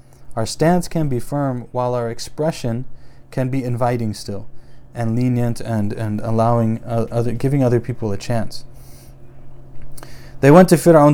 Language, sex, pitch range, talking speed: English, male, 120-145 Hz, 150 wpm